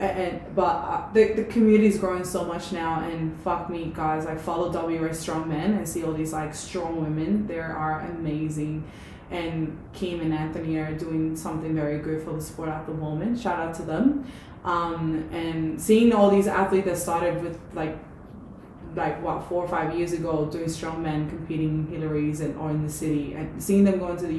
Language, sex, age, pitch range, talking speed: English, female, 20-39, 160-185 Hz, 205 wpm